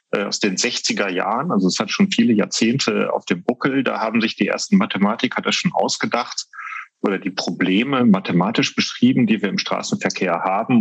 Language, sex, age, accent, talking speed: German, male, 40-59, German, 180 wpm